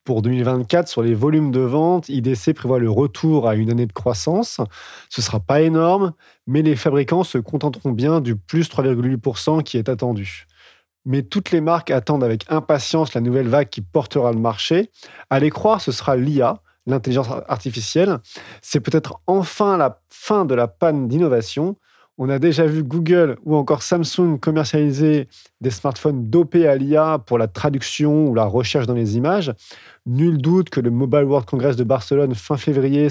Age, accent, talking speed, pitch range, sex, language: 30-49, French, 175 wpm, 125-160 Hz, male, French